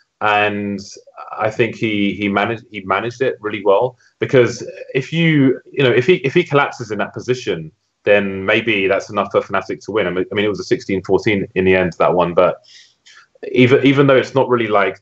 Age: 20-39